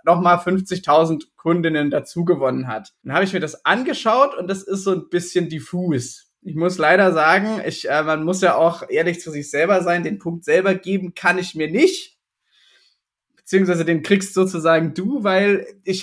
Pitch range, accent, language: 165-205 Hz, German, German